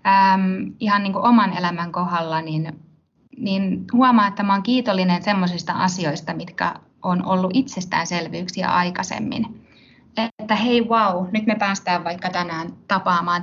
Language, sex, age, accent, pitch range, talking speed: Finnish, female, 20-39, native, 175-215 Hz, 130 wpm